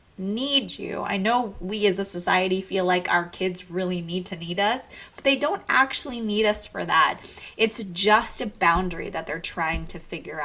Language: English